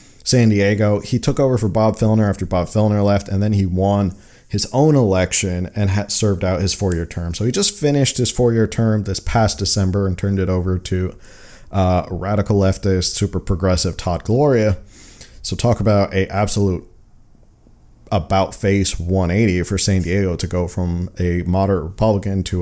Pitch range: 95-115 Hz